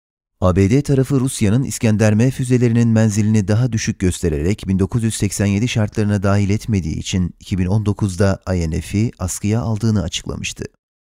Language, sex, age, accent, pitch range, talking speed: Turkish, male, 30-49, native, 95-115 Hz, 105 wpm